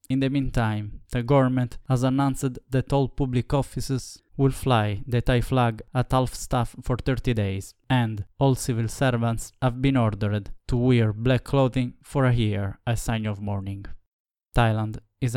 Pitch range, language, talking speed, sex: 110-130 Hz, English, 165 wpm, male